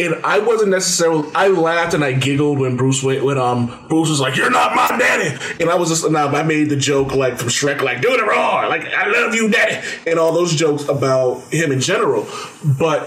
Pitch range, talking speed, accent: 130-165 Hz, 235 wpm, American